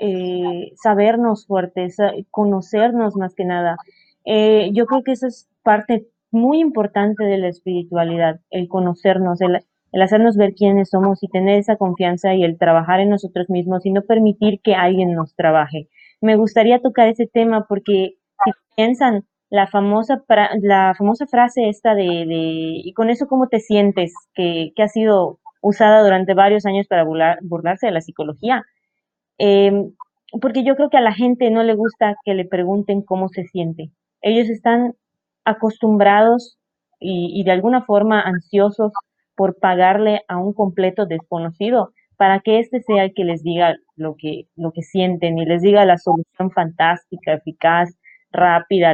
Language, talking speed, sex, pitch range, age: Spanish, 160 wpm, female, 180-220 Hz, 20-39